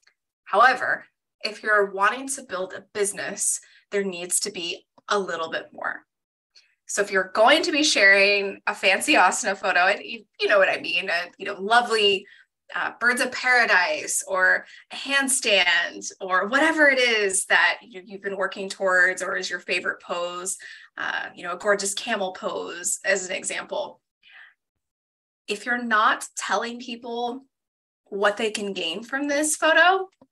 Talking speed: 150 wpm